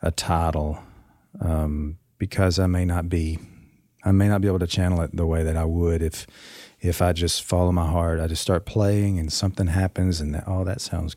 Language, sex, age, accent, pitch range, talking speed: English, male, 40-59, American, 80-100 Hz, 215 wpm